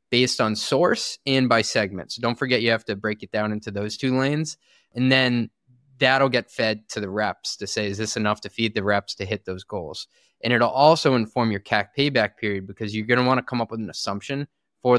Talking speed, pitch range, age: 230 wpm, 105-125 Hz, 20-39